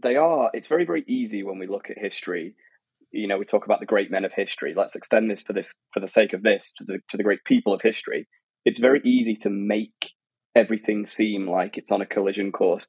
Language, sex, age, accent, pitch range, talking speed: English, male, 20-39, British, 100-115 Hz, 240 wpm